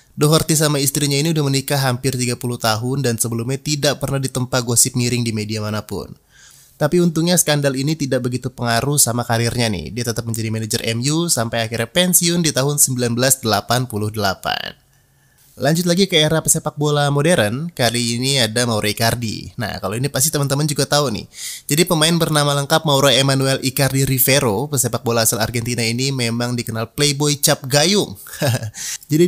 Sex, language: male, Indonesian